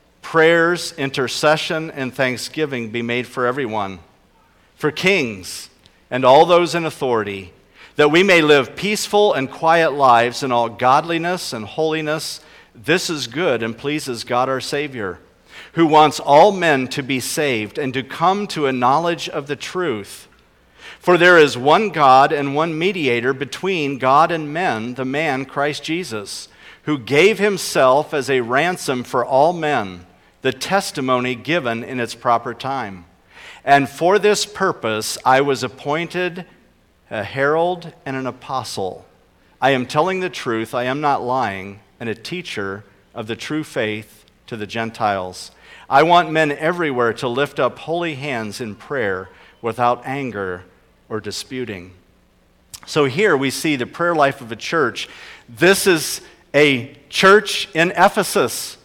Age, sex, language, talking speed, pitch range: 50-69, male, English, 150 wpm, 115-165 Hz